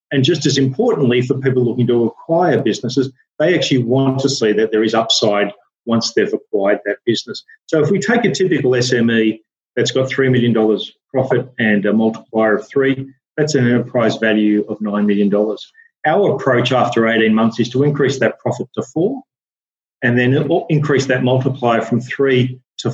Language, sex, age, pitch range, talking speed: English, male, 40-59, 110-140 Hz, 180 wpm